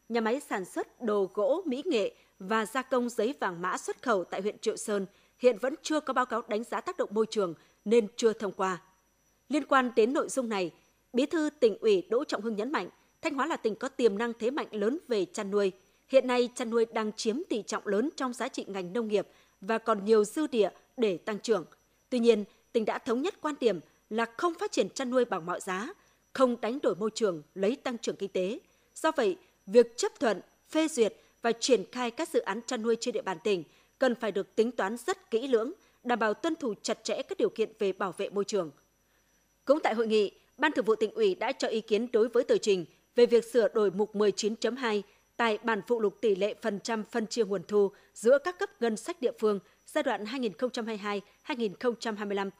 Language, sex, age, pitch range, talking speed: Vietnamese, female, 20-39, 210-270 Hz, 230 wpm